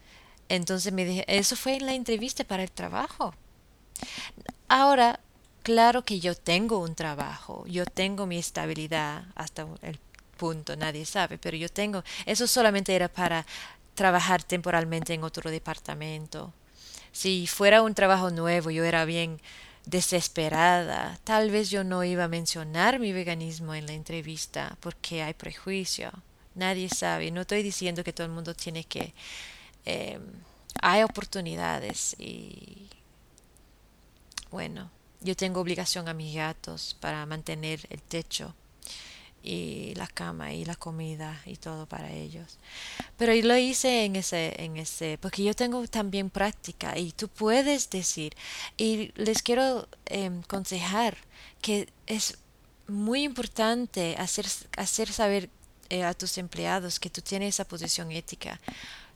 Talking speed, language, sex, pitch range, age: 140 wpm, English, female, 165-205 Hz, 20-39